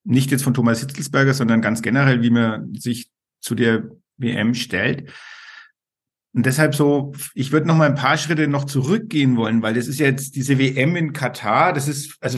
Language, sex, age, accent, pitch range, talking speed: German, male, 50-69, German, 120-145 Hz, 190 wpm